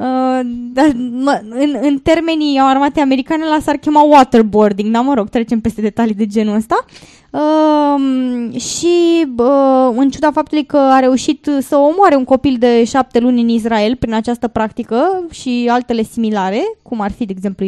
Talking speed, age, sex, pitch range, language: 170 wpm, 20-39, female, 215-270 Hz, Romanian